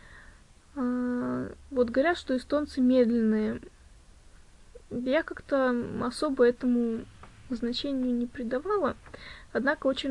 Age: 20-39